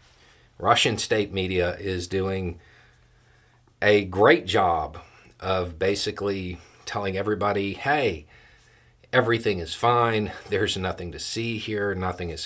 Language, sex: English, male